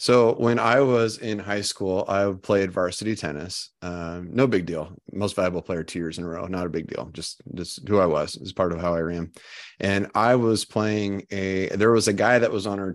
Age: 30-49